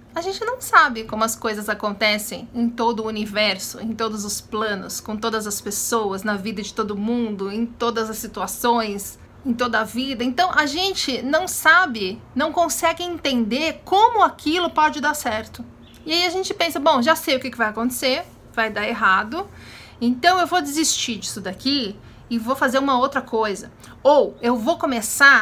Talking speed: 180 wpm